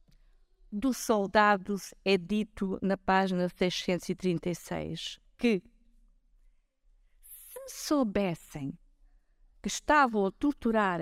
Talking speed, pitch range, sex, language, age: 75 wpm, 165-220 Hz, female, Portuguese, 50-69